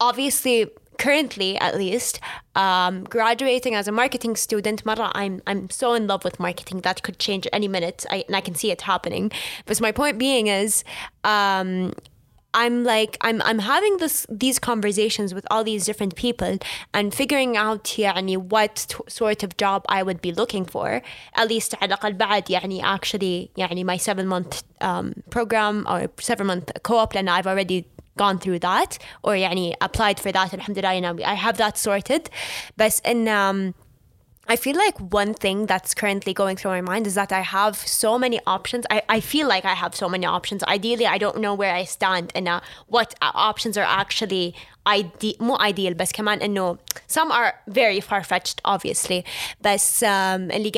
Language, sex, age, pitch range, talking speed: English, female, 10-29, 190-225 Hz, 180 wpm